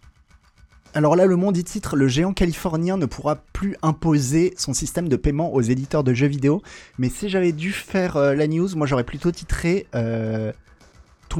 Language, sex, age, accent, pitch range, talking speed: French, male, 20-39, French, 110-155 Hz, 185 wpm